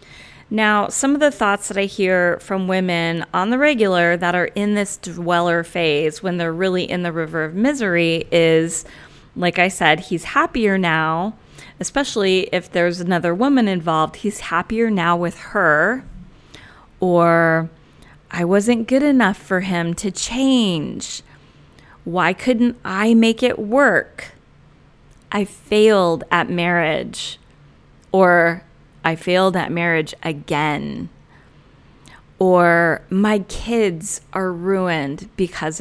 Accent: American